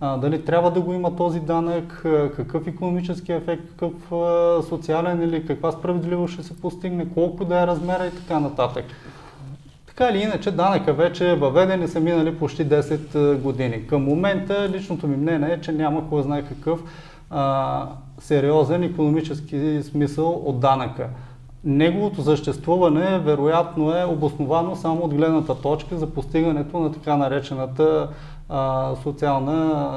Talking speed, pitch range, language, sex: 140 wpm, 140-165 Hz, Bulgarian, male